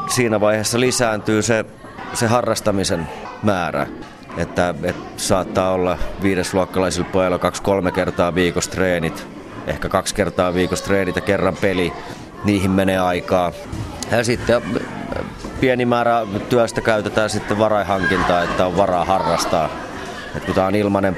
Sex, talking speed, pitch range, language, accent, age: male, 130 wpm, 90-110 Hz, Finnish, native, 30-49